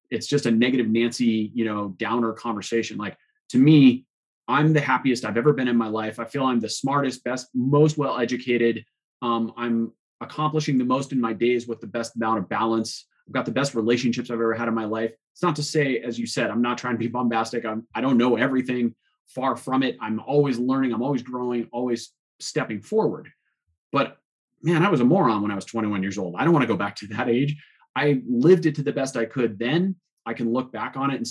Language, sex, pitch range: English, male, 115-145 Hz